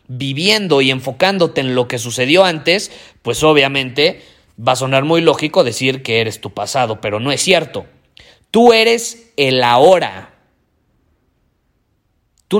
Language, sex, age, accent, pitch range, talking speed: Spanish, male, 30-49, Mexican, 125-160 Hz, 140 wpm